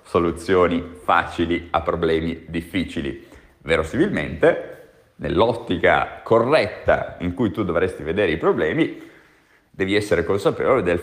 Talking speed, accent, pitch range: 105 wpm, native, 85-115 Hz